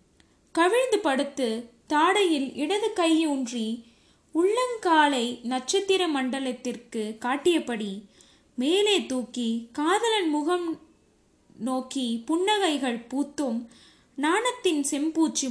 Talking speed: 70 wpm